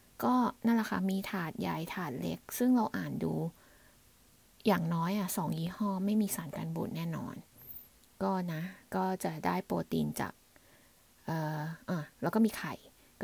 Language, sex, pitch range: Thai, female, 170-210 Hz